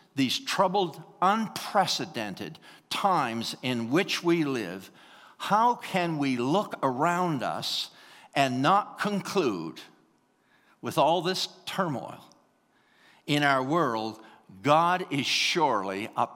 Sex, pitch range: male, 135-185 Hz